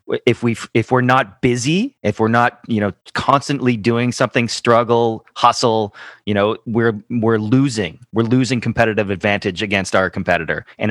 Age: 30-49